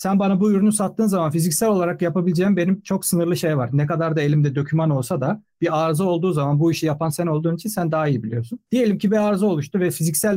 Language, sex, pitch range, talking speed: Turkish, male, 150-195 Hz, 245 wpm